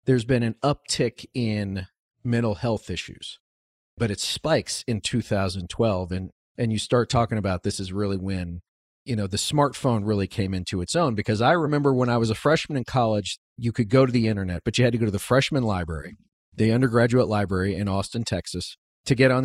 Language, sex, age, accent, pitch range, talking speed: English, male, 40-59, American, 100-130 Hz, 205 wpm